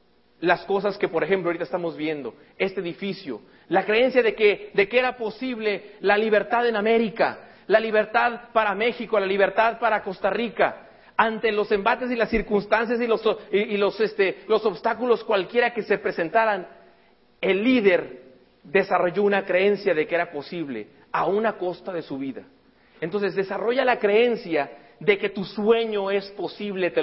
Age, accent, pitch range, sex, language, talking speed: 40-59, Mexican, 185-225 Hz, male, English, 160 wpm